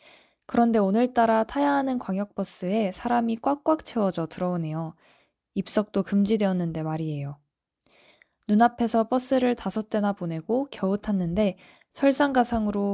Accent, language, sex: native, Korean, female